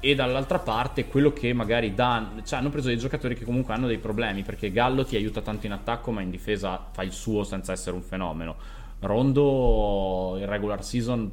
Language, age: Italian, 20-39